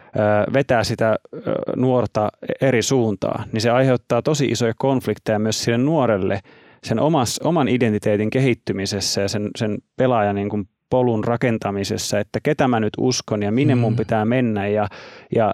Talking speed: 145 wpm